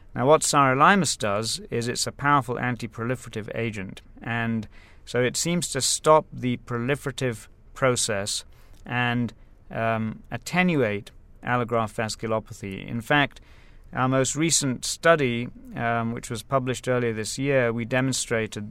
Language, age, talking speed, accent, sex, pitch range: English, 40-59, 125 wpm, British, male, 110-130 Hz